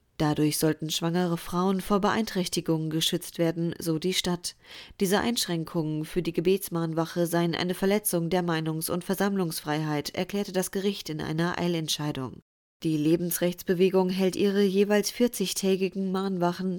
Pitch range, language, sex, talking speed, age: 160-195 Hz, German, female, 130 wpm, 20-39